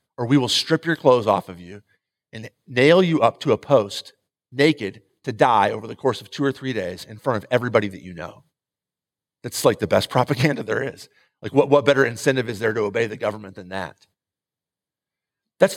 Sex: male